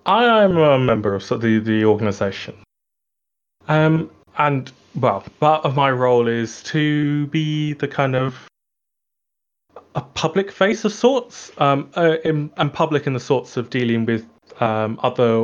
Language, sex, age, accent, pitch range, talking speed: English, male, 20-39, British, 110-145 Hz, 150 wpm